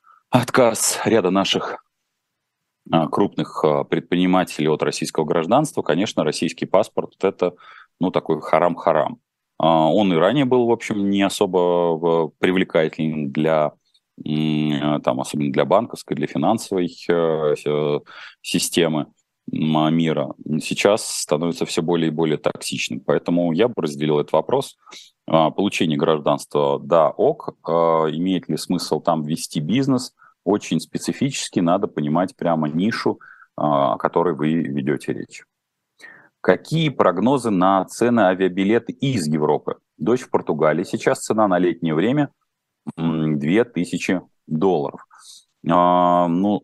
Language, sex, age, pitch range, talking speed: Russian, male, 30-49, 80-95 Hz, 110 wpm